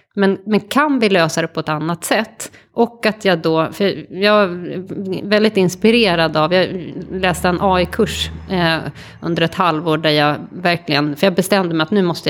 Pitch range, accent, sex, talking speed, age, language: 160-200 Hz, native, female, 190 wpm, 30-49, Swedish